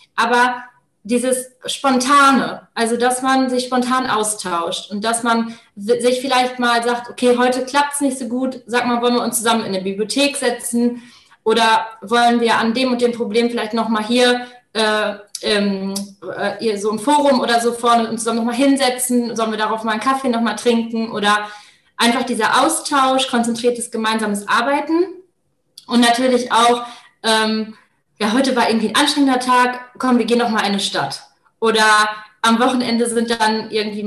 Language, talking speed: German, 170 wpm